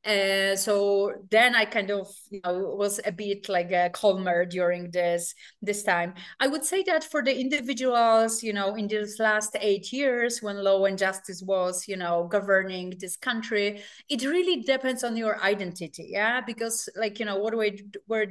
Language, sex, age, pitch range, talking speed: English, female, 30-49, 190-225 Hz, 185 wpm